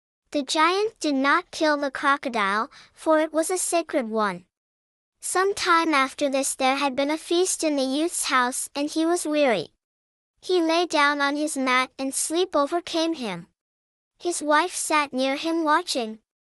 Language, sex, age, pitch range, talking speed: English, male, 10-29, 275-325 Hz, 165 wpm